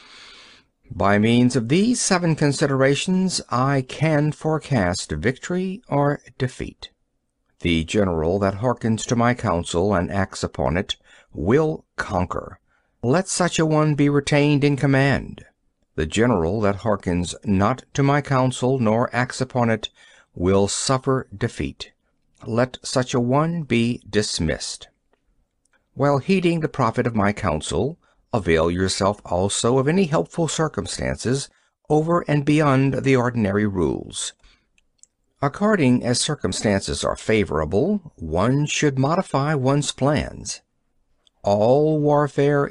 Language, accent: Hindi, American